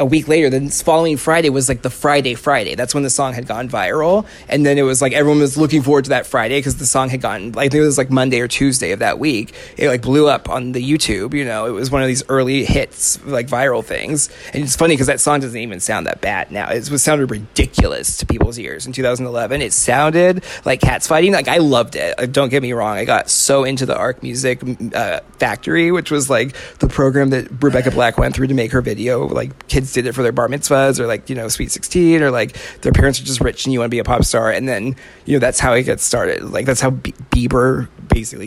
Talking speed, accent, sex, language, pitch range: 255 wpm, American, male, English, 125-145 Hz